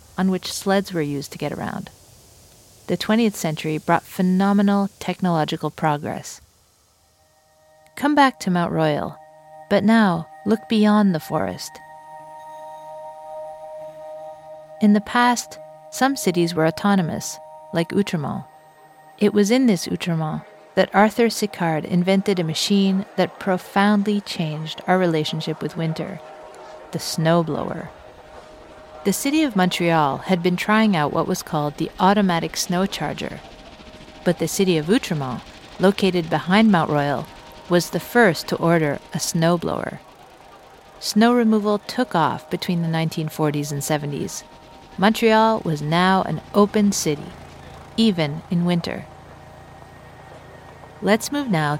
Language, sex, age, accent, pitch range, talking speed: French, female, 50-69, American, 155-200 Hz, 125 wpm